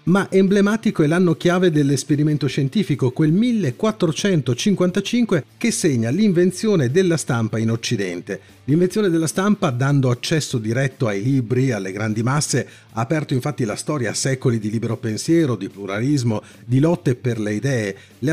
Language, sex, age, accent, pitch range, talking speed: Italian, male, 40-59, native, 120-175 Hz, 145 wpm